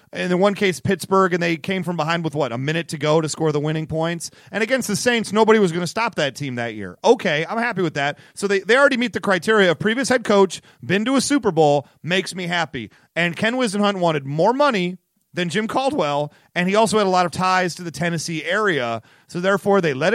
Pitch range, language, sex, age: 165-215 Hz, English, male, 30-49